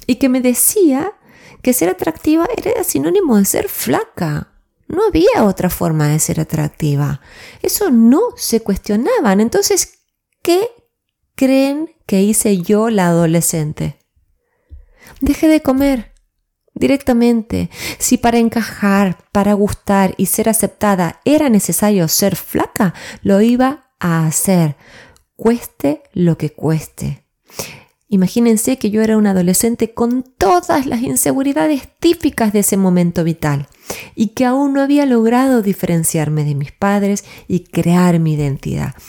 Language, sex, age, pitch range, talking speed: Spanish, female, 20-39, 175-255 Hz, 130 wpm